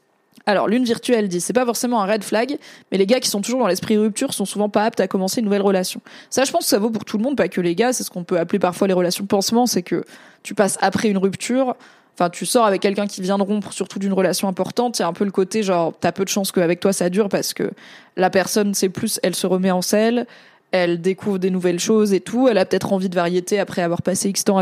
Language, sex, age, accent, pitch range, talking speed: French, female, 20-39, French, 185-220 Hz, 285 wpm